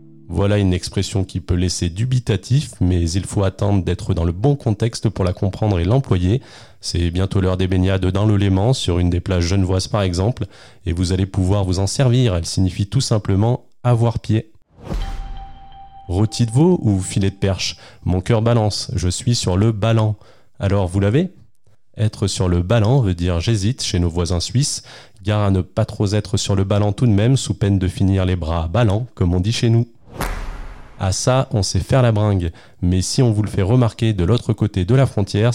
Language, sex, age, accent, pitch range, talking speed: French, male, 30-49, French, 95-120 Hz, 205 wpm